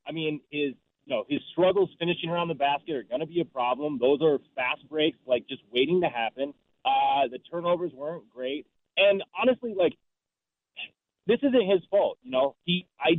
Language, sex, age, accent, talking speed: English, male, 30-49, American, 190 wpm